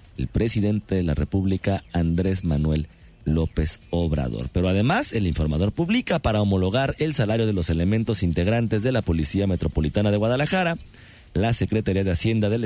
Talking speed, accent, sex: 155 wpm, Mexican, male